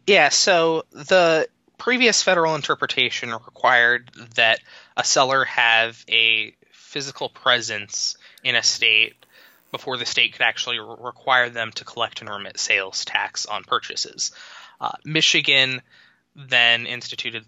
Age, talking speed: 20-39, 125 wpm